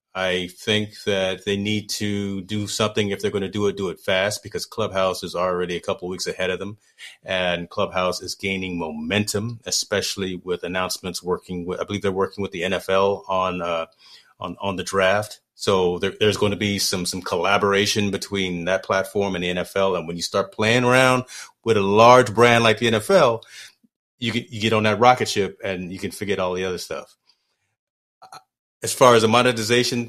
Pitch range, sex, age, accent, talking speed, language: 95-115 Hz, male, 30-49, American, 200 wpm, English